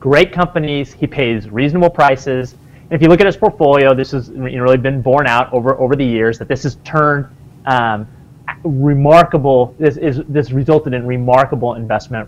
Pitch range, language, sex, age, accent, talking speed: 125-155 Hz, English, male, 30-49, American, 175 wpm